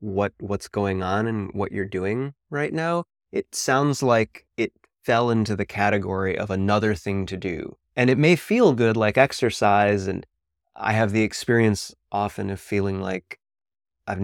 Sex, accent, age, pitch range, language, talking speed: male, American, 30-49, 95-110 Hz, English, 170 wpm